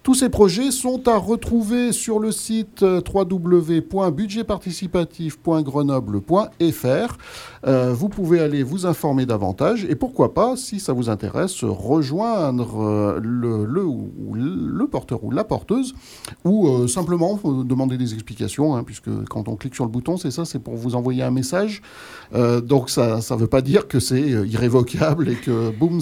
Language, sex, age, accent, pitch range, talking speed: French, male, 50-69, French, 120-190 Hz, 155 wpm